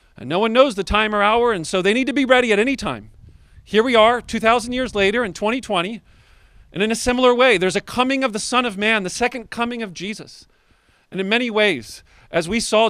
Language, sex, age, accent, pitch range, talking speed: English, male, 40-59, American, 145-225 Hz, 240 wpm